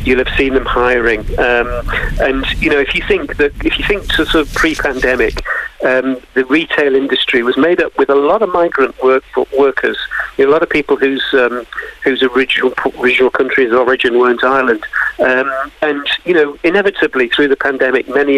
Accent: British